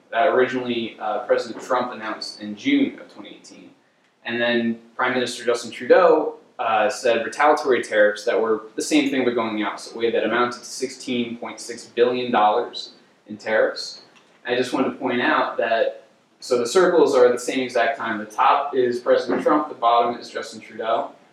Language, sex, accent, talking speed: English, male, American, 175 wpm